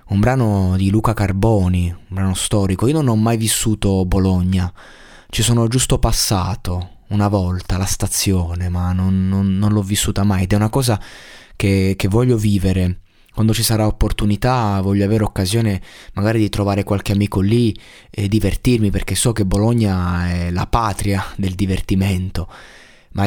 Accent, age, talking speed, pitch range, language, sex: native, 20-39, 155 wpm, 95-115 Hz, Italian, male